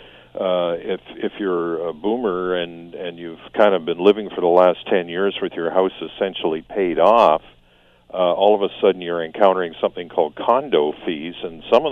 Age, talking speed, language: 50-69, 190 wpm, English